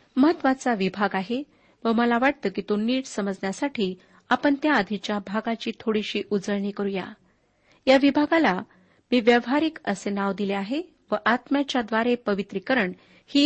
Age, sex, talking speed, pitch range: 40-59, female, 130 wpm, 205-275 Hz